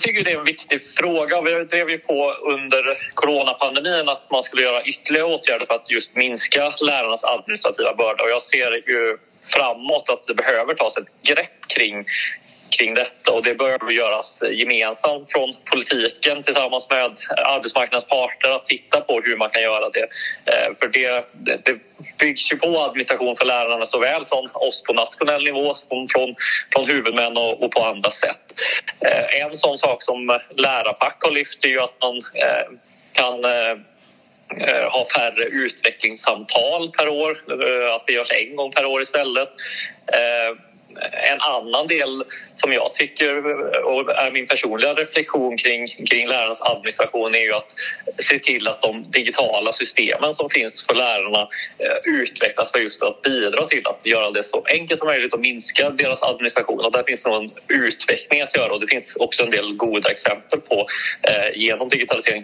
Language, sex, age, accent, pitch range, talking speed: Swedish, male, 30-49, native, 120-165 Hz, 165 wpm